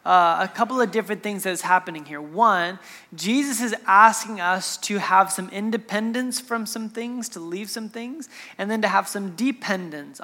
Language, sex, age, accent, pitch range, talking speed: English, male, 20-39, American, 175-225 Hz, 190 wpm